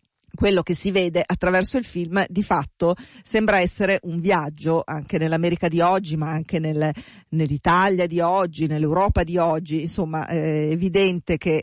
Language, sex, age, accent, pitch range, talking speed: Italian, female, 40-59, native, 160-185 Hz, 150 wpm